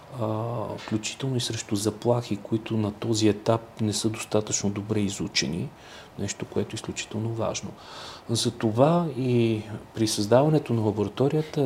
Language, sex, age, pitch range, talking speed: Bulgarian, male, 40-59, 105-115 Hz, 125 wpm